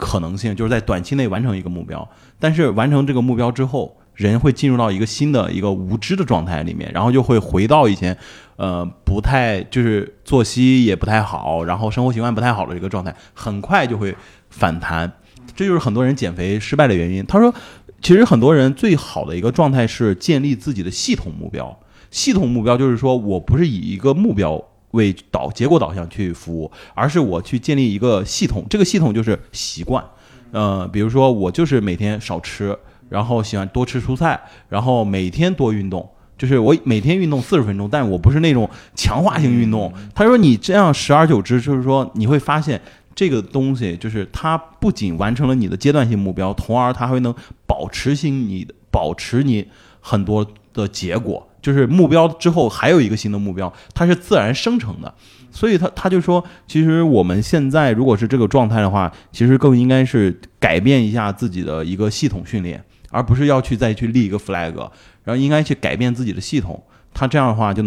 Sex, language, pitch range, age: male, Chinese, 100-135 Hz, 20-39